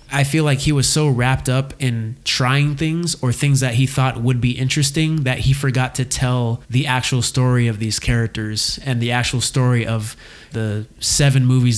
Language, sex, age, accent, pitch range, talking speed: English, male, 20-39, American, 115-135 Hz, 195 wpm